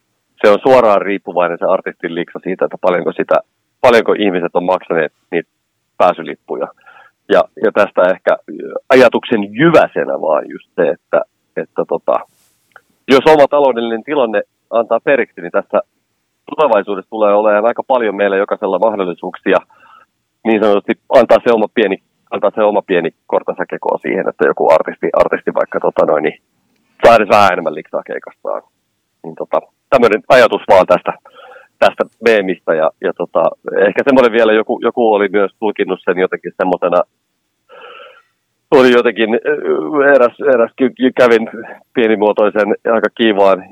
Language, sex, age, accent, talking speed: Finnish, male, 30-49, native, 130 wpm